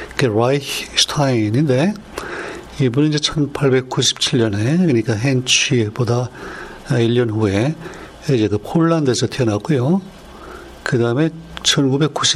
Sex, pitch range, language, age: male, 115-150 Hz, Korean, 60-79